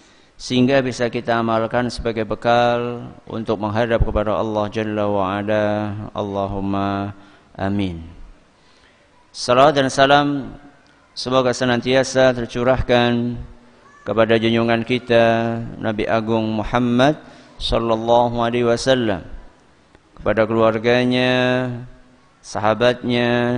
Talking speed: 80 wpm